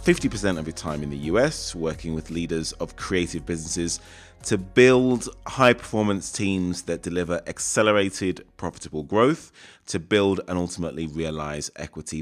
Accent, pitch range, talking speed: British, 80-105 Hz, 135 wpm